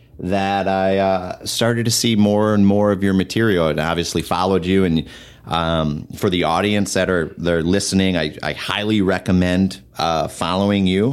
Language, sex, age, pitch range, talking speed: English, male, 30-49, 85-100 Hz, 175 wpm